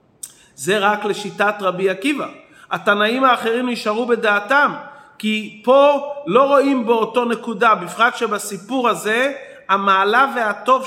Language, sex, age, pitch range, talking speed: Hebrew, male, 40-59, 200-250 Hz, 110 wpm